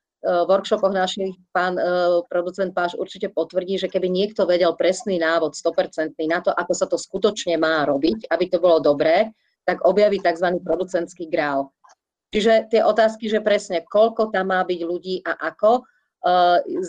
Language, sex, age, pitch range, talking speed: Slovak, female, 30-49, 175-210 Hz, 165 wpm